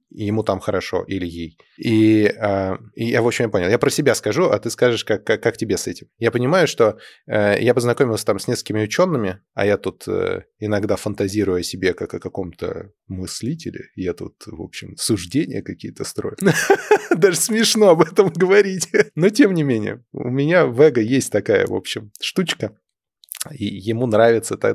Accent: native